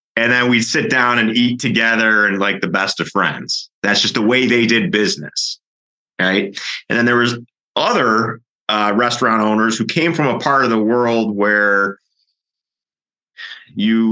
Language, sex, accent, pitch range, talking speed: English, male, American, 100-120 Hz, 170 wpm